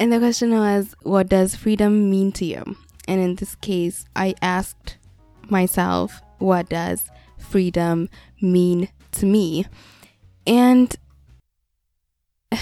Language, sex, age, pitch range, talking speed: English, female, 10-29, 180-230 Hz, 120 wpm